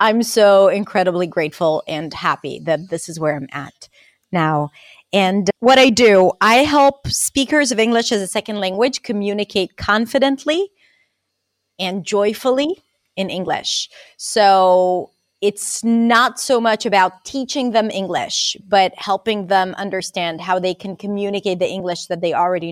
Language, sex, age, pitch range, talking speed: English, female, 30-49, 180-215 Hz, 145 wpm